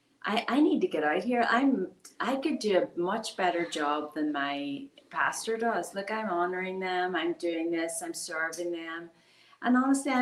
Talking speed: 180 wpm